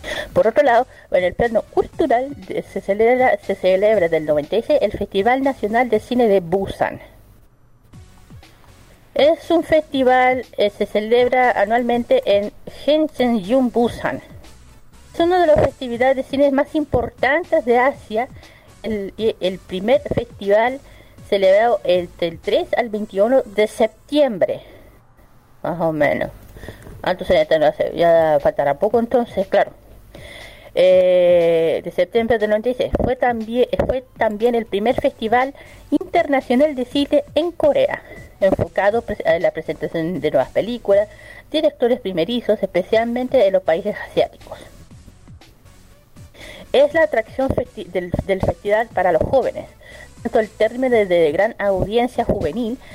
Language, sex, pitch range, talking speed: Spanish, female, 195-270 Hz, 130 wpm